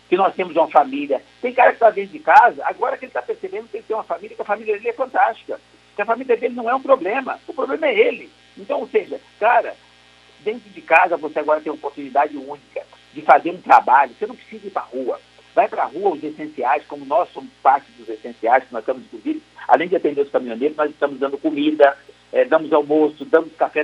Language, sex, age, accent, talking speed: Portuguese, male, 60-79, Brazilian, 235 wpm